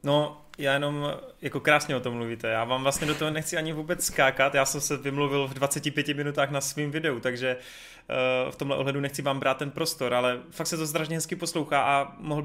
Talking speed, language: 215 wpm, Czech